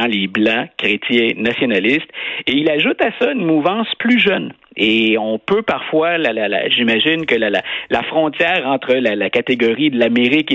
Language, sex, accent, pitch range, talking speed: French, male, Canadian, 110-155 Hz, 180 wpm